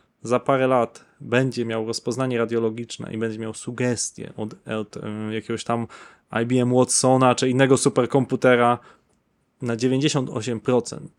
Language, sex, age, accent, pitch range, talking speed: Polish, male, 20-39, native, 125-160 Hz, 120 wpm